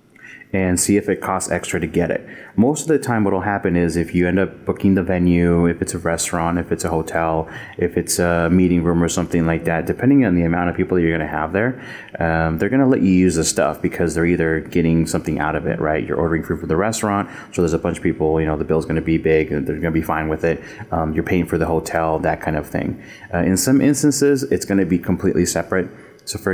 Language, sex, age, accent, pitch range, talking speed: English, male, 30-49, American, 80-95 Hz, 260 wpm